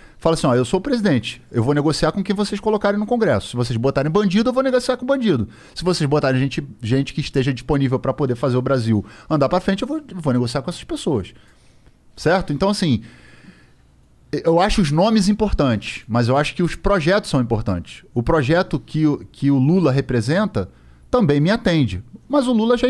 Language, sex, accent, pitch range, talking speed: Portuguese, male, Brazilian, 130-200 Hz, 200 wpm